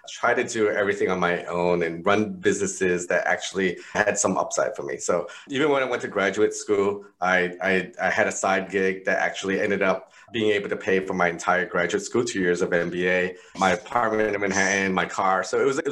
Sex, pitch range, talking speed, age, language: male, 95-125 Hz, 220 wpm, 30-49, English